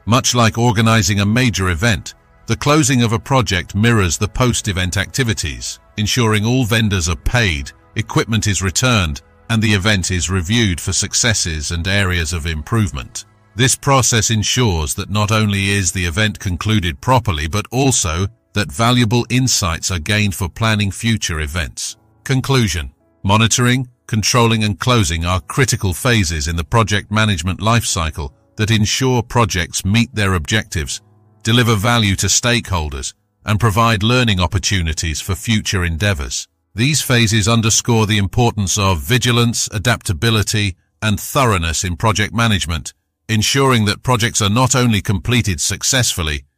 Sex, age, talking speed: male, 50-69, 140 wpm